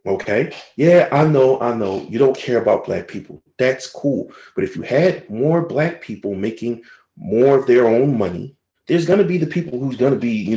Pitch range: 105-165 Hz